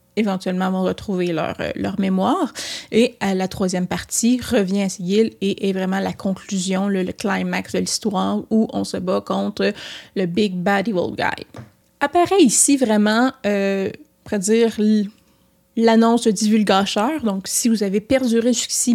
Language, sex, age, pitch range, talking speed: French, female, 20-39, 200-235 Hz, 150 wpm